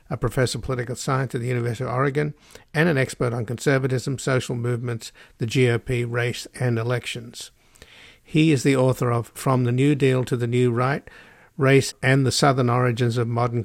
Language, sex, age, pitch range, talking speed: English, male, 50-69, 120-135 Hz, 185 wpm